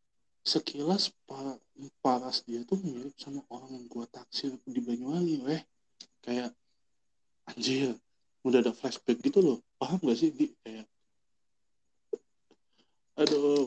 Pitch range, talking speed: 105-120 Hz, 115 wpm